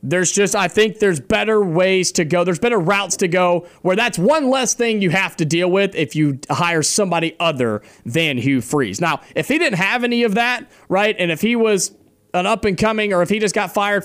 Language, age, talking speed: English, 30-49, 225 wpm